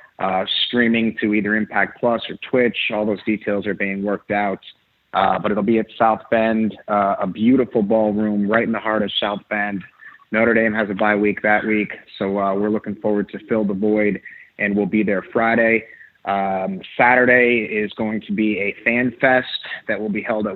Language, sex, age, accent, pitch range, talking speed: English, male, 30-49, American, 100-115 Hz, 200 wpm